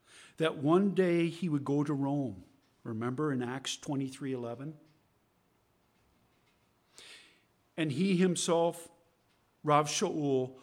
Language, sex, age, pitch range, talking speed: English, male, 50-69, 130-165 Hz, 95 wpm